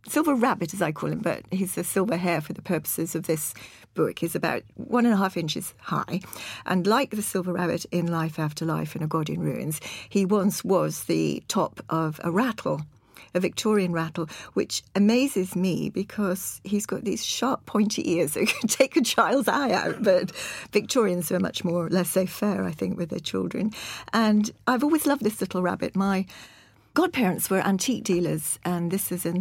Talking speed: 195 wpm